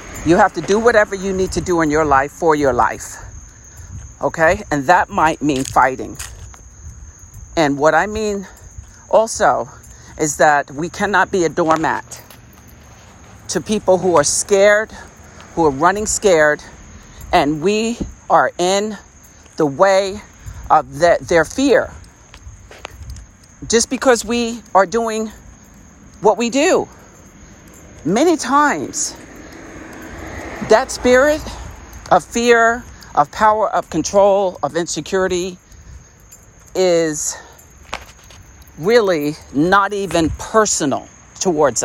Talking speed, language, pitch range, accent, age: 110 wpm, English, 145-205 Hz, American, 50-69